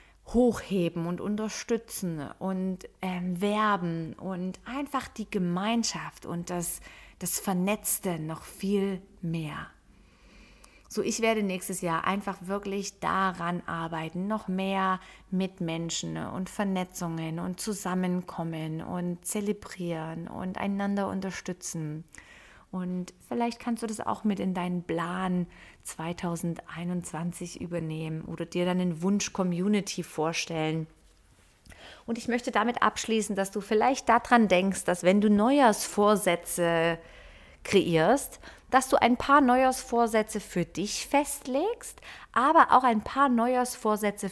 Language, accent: German, German